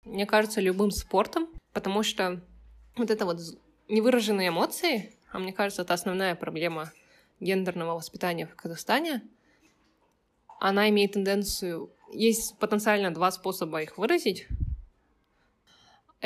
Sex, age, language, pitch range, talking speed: female, 20-39, Russian, 180-215 Hz, 110 wpm